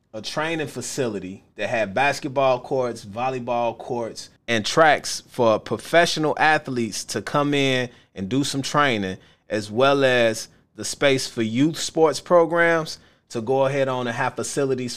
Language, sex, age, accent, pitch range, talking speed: English, male, 30-49, American, 110-140 Hz, 150 wpm